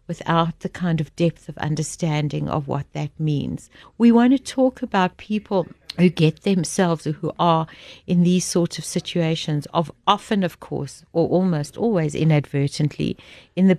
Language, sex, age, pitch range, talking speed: English, female, 60-79, 155-190 Hz, 165 wpm